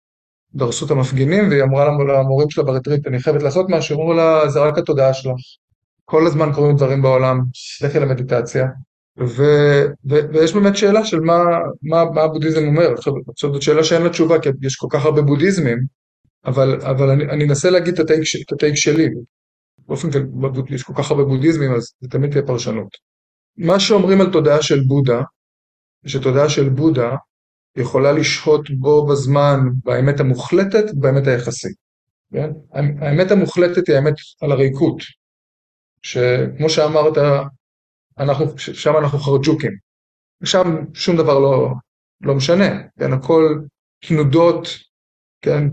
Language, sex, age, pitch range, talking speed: Hebrew, male, 20-39, 135-160 Hz, 140 wpm